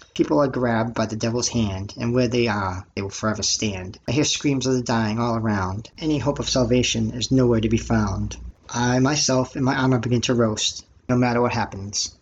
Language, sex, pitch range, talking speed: English, male, 105-125 Hz, 215 wpm